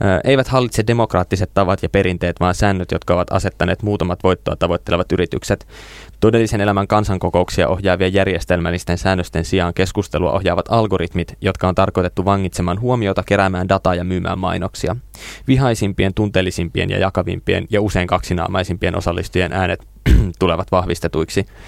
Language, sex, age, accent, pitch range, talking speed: Finnish, male, 20-39, native, 90-105 Hz, 130 wpm